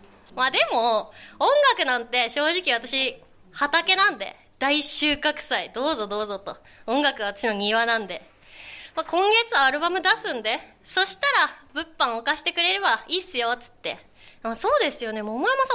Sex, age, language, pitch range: female, 20-39, Japanese, 230-375 Hz